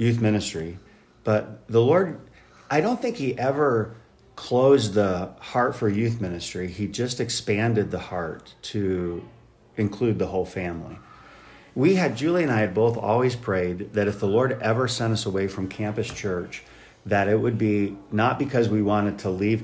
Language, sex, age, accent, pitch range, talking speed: English, male, 50-69, American, 95-115 Hz, 170 wpm